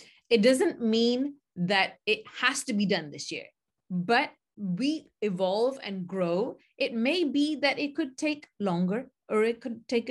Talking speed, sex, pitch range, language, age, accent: 165 wpm, female, 190-245 Hz, English, 30-49, Indian